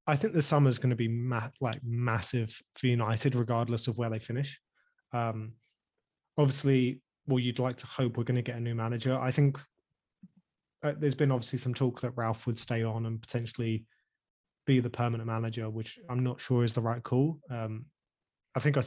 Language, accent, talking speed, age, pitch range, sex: English, British, 195 wpm, 20-39, 115-135 Hz, male